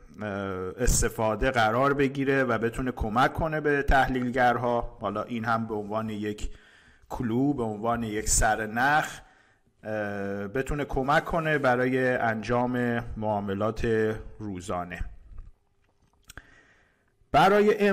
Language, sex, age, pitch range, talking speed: Persian, male, 50-69, 110-140 Hz, 95 wpm